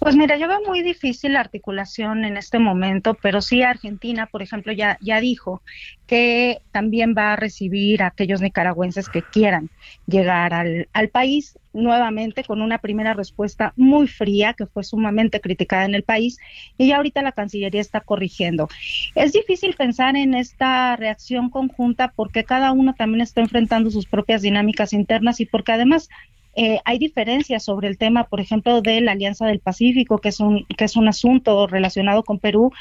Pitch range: 210-245 Hz